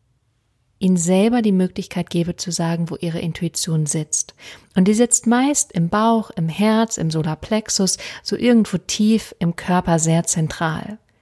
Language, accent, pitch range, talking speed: German, German, 165-205 Hz, 150 wpm